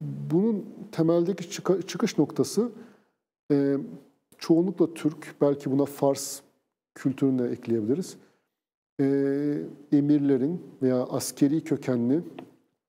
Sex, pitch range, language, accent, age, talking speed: male, 135-165 Hz, Turkish, native, 50-69, 75 wpm